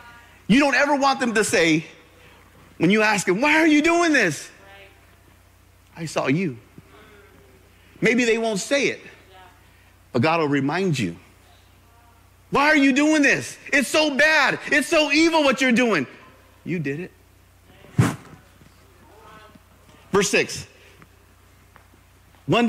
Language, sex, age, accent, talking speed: English, male, 50-69, American, 130 wpm